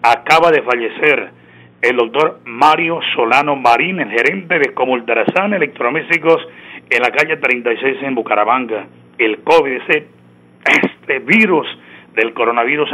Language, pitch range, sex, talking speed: Spanish, 125-180 Hz, male, 120 wpm